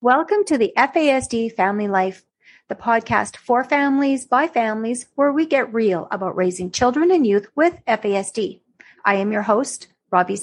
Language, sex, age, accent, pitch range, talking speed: English, female, 40-59, American, 205-270 Hz, 160 wpm